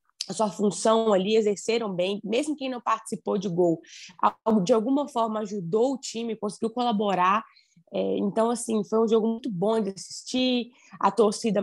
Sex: female